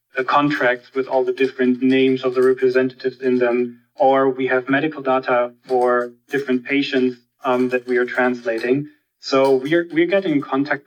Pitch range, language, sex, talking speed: 125-140 Hz, English, male, 165 wpm